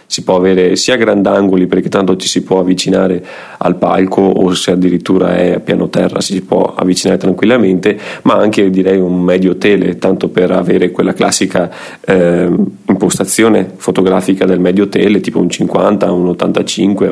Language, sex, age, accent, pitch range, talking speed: Italian, male, 30-49, native, 90-100 Hz, 160 wpm